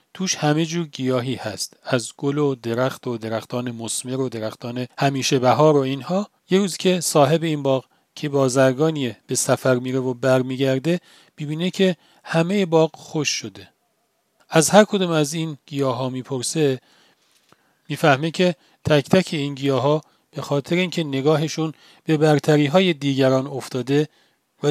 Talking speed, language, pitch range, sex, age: 150 wpm, Persian, 130-160 Hz, male, 40-59